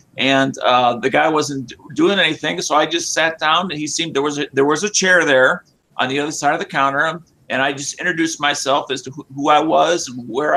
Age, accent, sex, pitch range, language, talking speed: 50-69, American, male, 140-180 Hz, English, 245 wpm